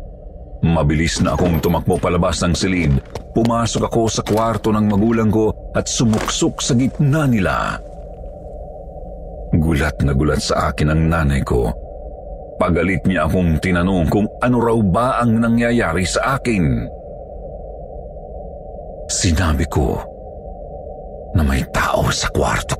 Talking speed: 120 wpm